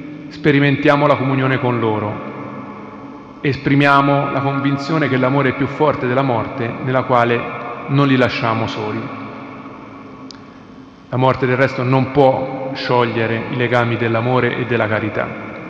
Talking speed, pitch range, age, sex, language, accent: 130 wpm, 120-140 Hz, 30-49, male, Italian, native